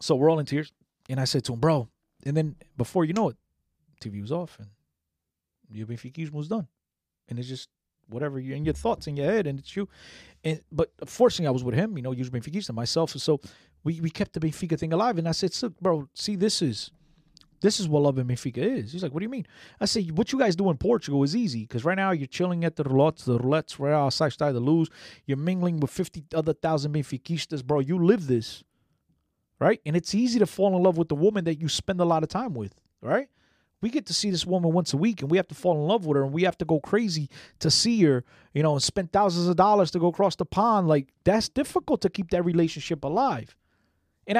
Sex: male